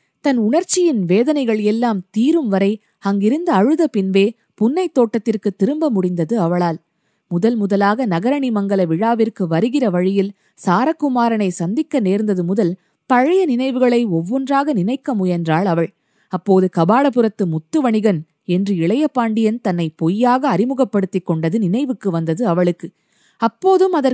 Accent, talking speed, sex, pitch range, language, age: native, 110 wpm, female, 185-255 Hz, Tamil, 20-39